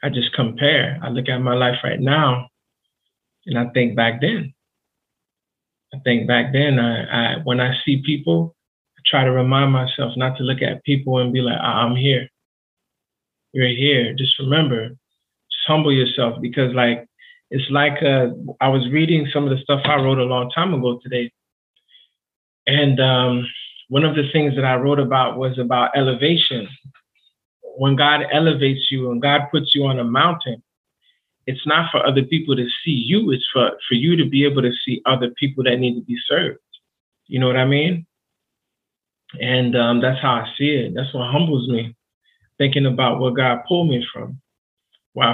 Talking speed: 185 wpm